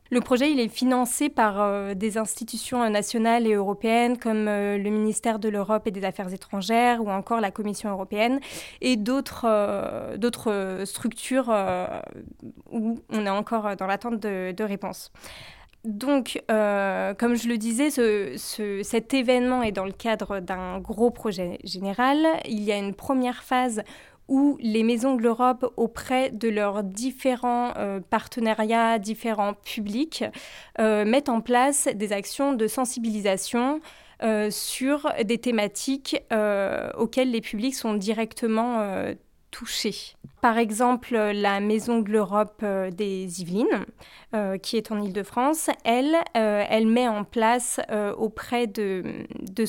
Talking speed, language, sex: 150 wpm, French, female